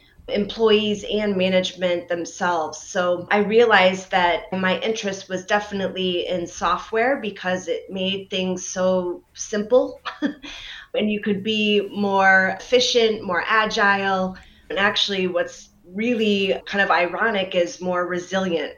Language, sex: English, female